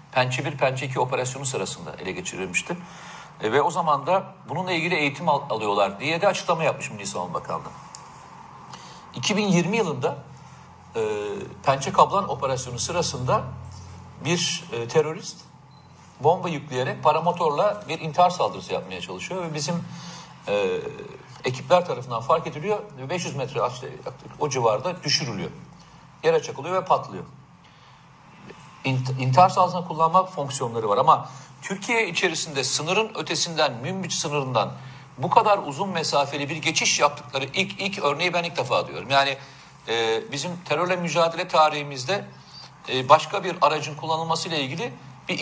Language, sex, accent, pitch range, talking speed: Turkish, male, native, 140-180 Hz, 130 wpm